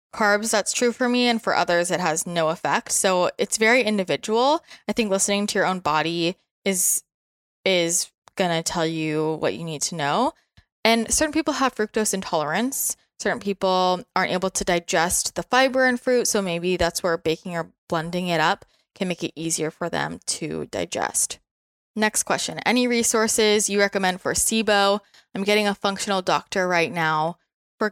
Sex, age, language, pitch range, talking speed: female, 20-39, English, 170-215 Hz, 175 wpm